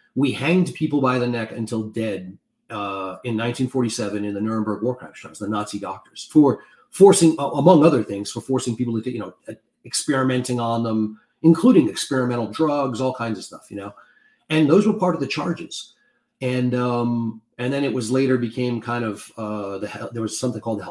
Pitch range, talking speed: 110-140 Hz, 190 wpm